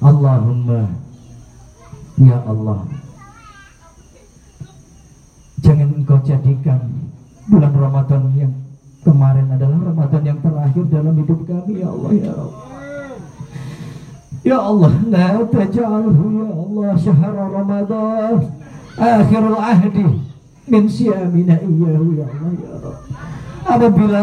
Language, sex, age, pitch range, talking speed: English, male, 50-69, 135-200 Hz, 75 wpm